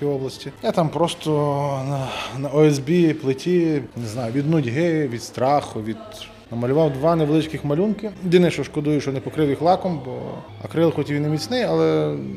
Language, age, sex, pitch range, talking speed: Ukrainian, 20-39, male, 120-155 Hz, 165 wpm